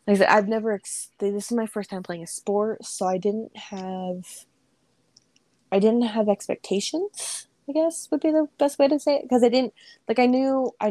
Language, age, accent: English, 20-39, American